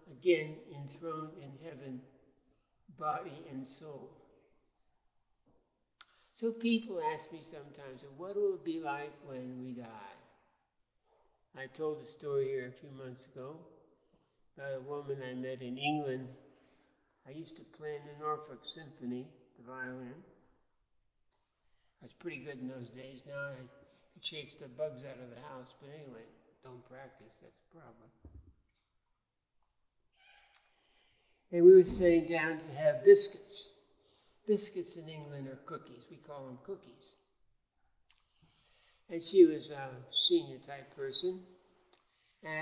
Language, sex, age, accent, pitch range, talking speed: English, male, 60-79, American, 130-165 Hz, 130 wpm